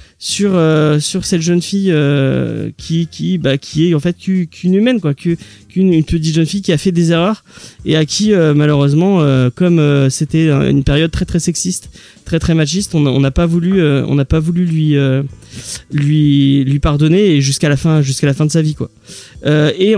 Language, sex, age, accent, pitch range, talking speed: French, male, 30-49, French, 160-205 Hz, 215 wpm